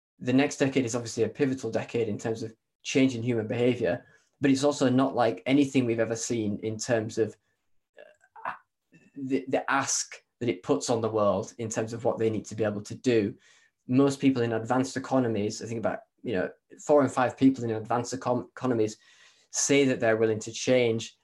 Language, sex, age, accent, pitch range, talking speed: English, male, 10-29, British, 110-130 Hz, 195 wpm